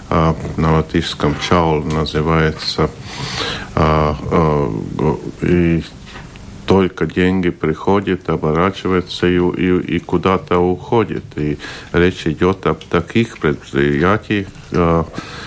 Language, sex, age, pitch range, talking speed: Russian, male, 50-69, 80-90 Hz, 70 wpm